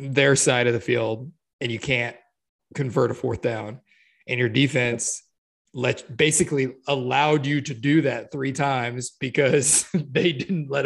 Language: English